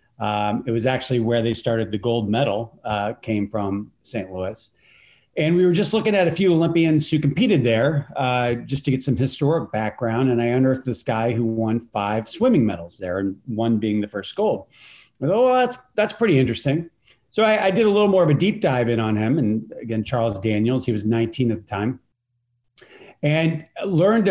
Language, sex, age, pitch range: English, male, 40-59, 110-145 Hz